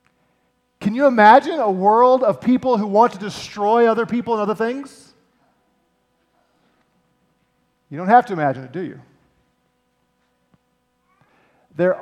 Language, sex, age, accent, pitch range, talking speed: English, male, 40-59, American, 130-215 Hz, 125 wpm